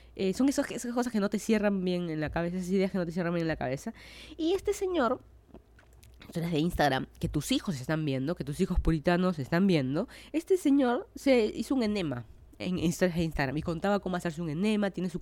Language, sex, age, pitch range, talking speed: Spanish, female, 20-39, 160-210 Hz, 235 wpm